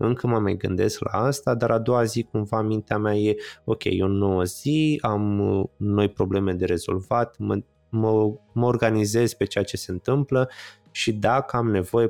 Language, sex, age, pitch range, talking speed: Romanian, male, 20-39, 95-115 Hz, 180 wpm